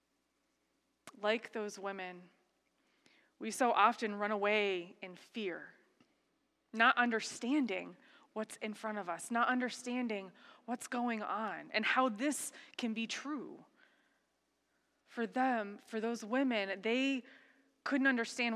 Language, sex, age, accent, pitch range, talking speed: English, female, 20-39, American, 195-255 Hz, 115 wpm